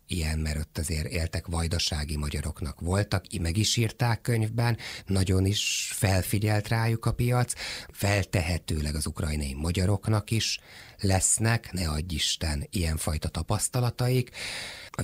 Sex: male